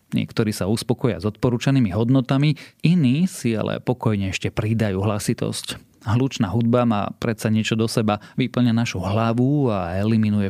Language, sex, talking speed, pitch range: Slovak, male, 145 wpm, 110-120 Hz